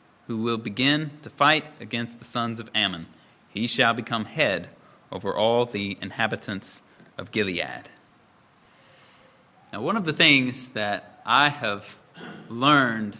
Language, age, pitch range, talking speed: English, 30-49, 130-170 Hz, 130 wpm